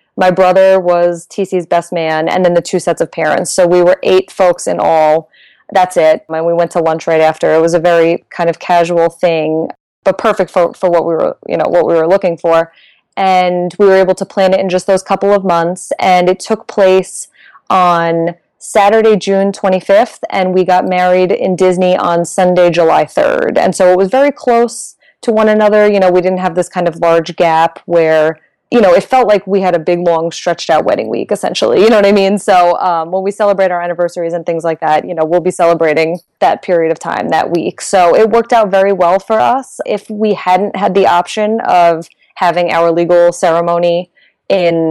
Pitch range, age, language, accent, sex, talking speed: 170-195 Hz, 20-39, English, American, female, 220 wpm